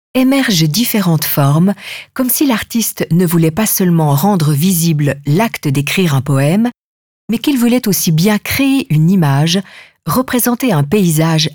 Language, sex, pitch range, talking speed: French, female, 150-210 Hz, 140 wpm